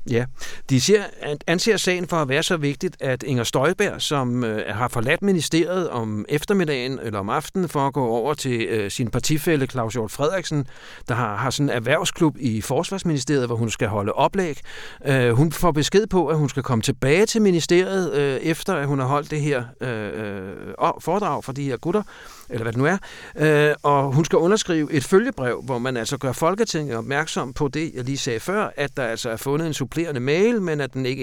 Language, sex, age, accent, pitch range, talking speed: Danish, male, 60-79, native, 125-160 Hz, 195 wpm